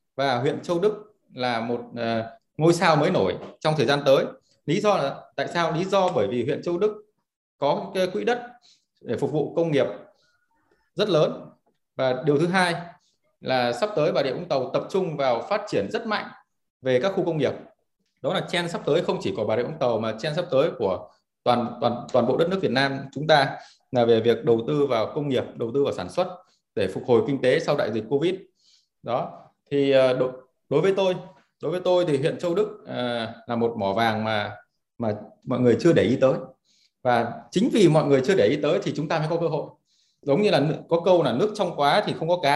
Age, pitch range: 20-39, 125-180 Hz